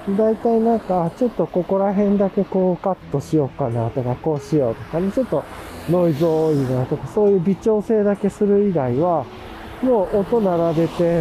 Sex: male